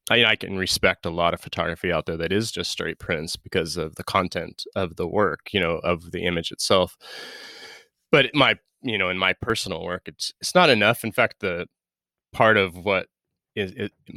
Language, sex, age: English, male, 20-39